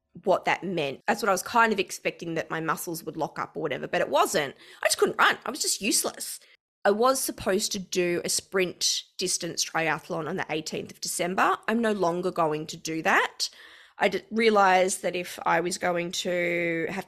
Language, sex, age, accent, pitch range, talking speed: English, female, 20-39, Australian, 165-220 Hz, 205 wpm